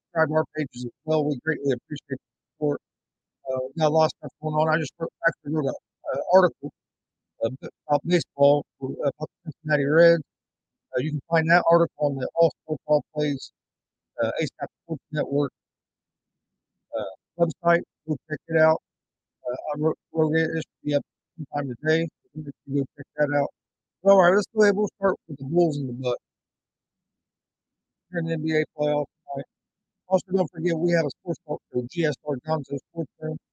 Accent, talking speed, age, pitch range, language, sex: American, 180 wpm, 50-69, 140-160 Hz, English, male